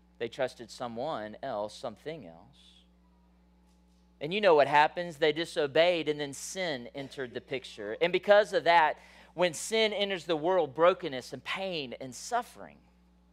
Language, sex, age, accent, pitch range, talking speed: English, male, 40-59, American, 155-260 Hz, 150 wpm